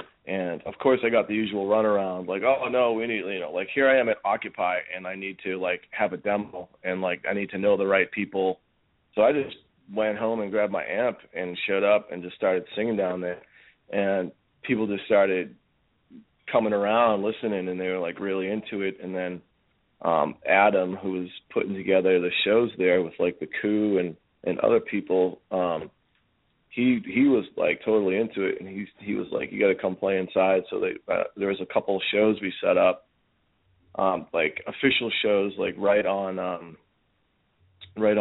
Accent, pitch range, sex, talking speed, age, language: American, 90-105 Hz, male, 205 wpm, 30-49, English